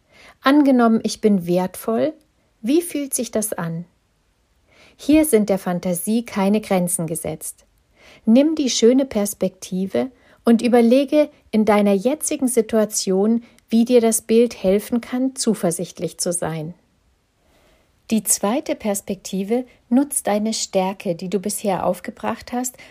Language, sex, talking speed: German, female, 120 wpm